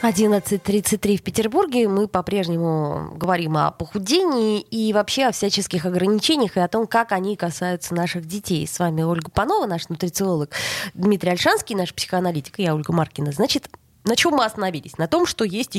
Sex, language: female, Russian